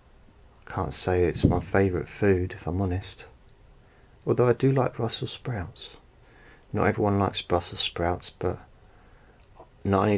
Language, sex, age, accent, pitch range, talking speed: English, male, 30-49, British, 90-105 Hz, 135 wpm